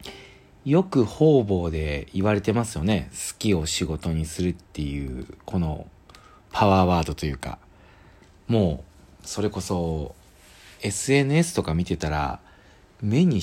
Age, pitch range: 40-59, 80-105 Hz